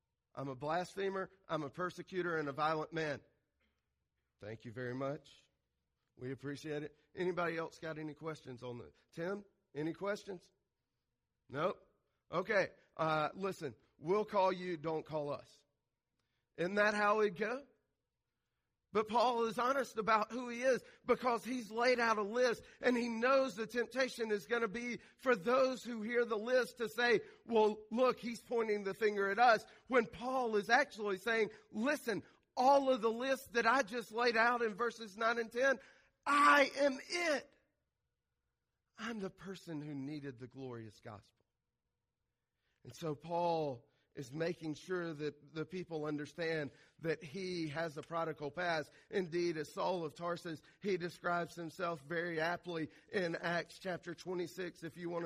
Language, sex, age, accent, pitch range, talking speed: English, male, 40-59, American, 155-230 Hz, 155 wpm